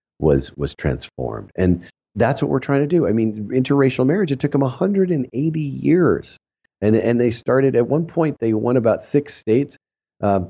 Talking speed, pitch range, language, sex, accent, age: 185 wpm, 90-125 Hz, English, male, American, 40-59